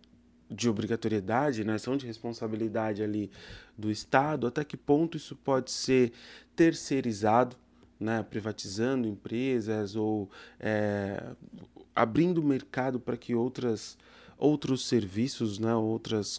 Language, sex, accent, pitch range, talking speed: Portuguese, male, Brazilian, 110-135 Hz, 115 wpm